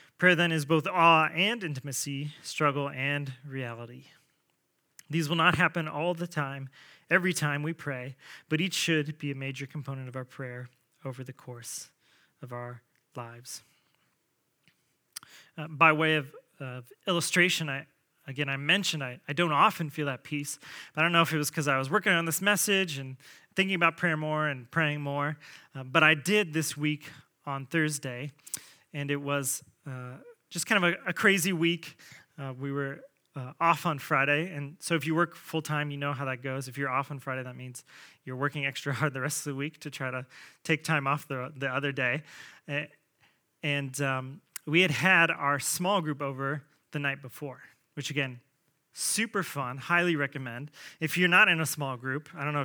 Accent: American